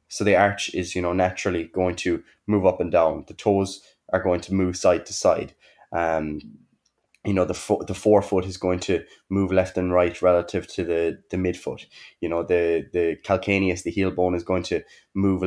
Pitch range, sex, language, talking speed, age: 90-100 Hz, male, English, 205 wpm, 20-39